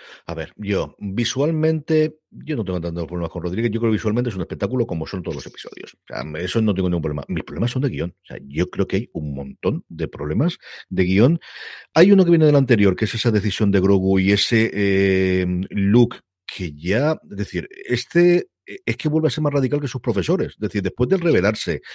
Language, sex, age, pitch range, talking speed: Spanish, male, 50-69, 95-125 Hz, 225 wpm